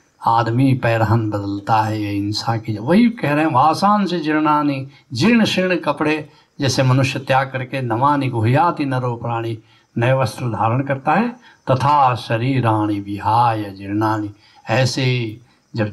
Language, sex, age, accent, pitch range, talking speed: Hindi, male, 60-79, native, 110-150 Hz, 145 wpm